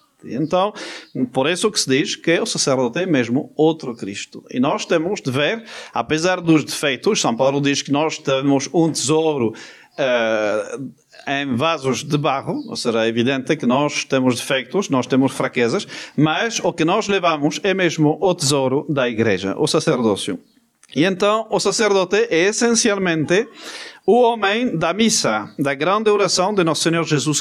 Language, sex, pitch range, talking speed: Portuguese, male, 140-185 Hz, 165 wpm